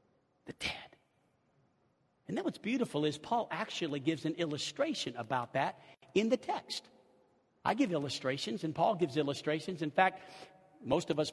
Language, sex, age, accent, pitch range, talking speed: English, male, 50-69, American, 165-260 Hz, 150 wpm